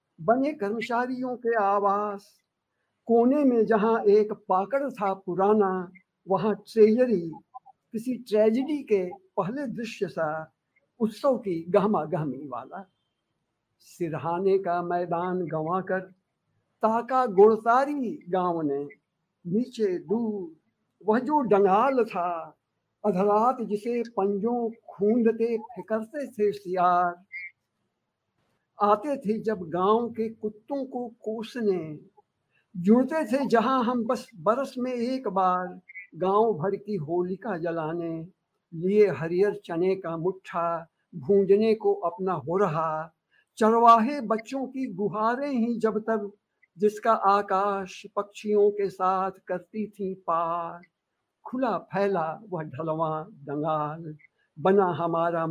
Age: 60-79